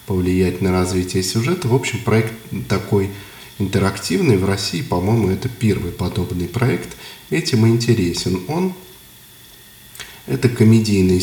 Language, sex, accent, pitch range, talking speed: Russian, male, native, 95-125 Hz, 120 wpm